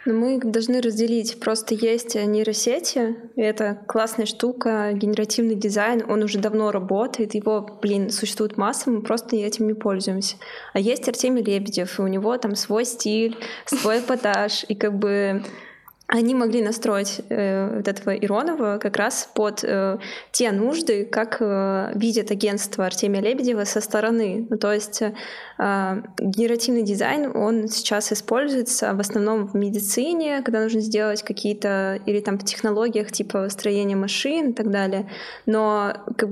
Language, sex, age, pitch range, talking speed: Russian, female, 20-39, 205-230 Hz, 145 wpm